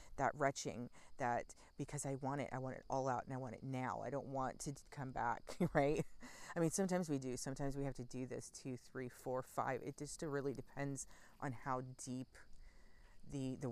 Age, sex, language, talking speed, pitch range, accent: 40-59, female, English, 210 wpm, 125-140 Hz, American